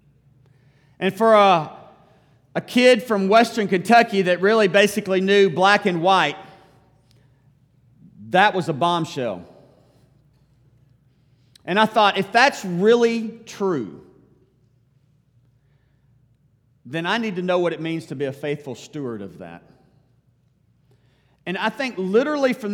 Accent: American